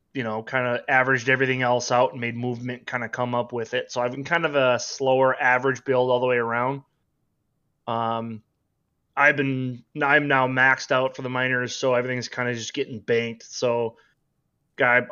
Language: English